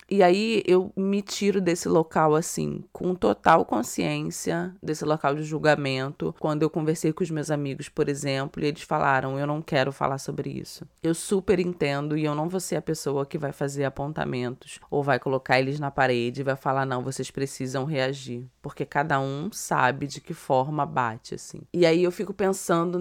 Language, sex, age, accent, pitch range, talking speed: Portuguese, female, 20-39, Brazilian, 135-165 Hz, 195 wpm